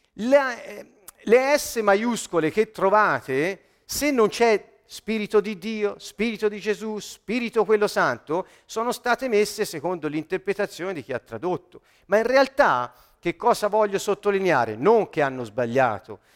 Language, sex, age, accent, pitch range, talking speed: Italian, male, 50-69, native, 150-235 Hz, 140 wpm